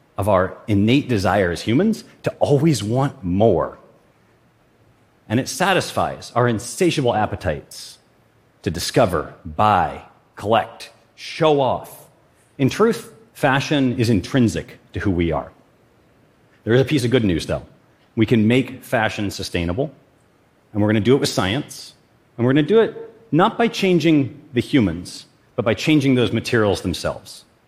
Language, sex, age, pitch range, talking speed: Arabic, male, 40-59, 100-140 Hz, 150 wpm